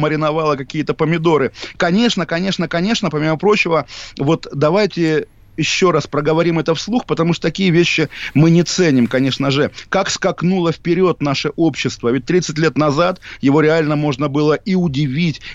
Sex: male